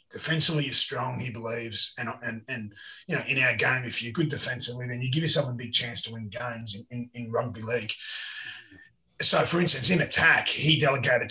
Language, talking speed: English, 205 wpm